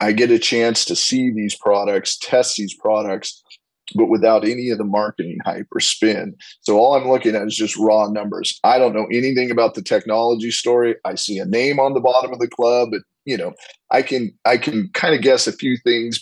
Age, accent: 30-49, American